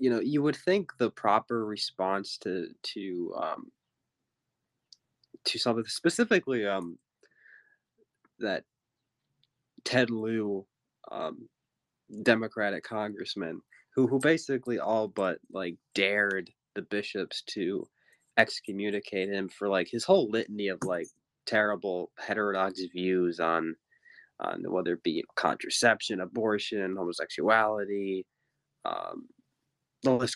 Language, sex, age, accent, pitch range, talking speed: English, male, 20-39, American, 100-135 Hz, 115 wpm